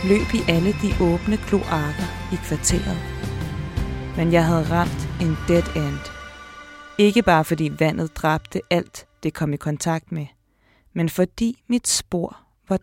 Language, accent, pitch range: Danish, native, 135-190 Hz